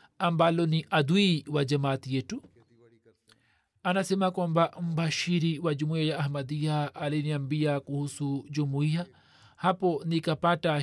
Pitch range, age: 145-170 Hz, 40-59